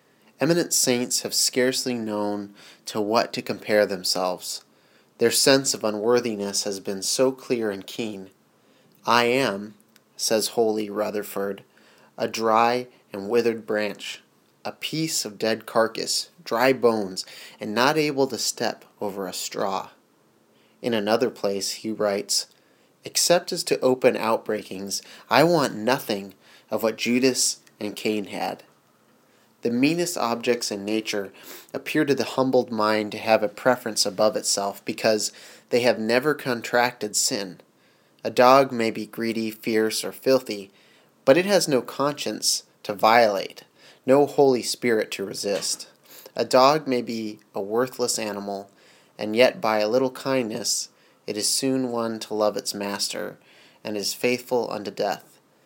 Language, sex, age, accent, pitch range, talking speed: English, male, 30-49, American, 105-130 Hz, 140 wpm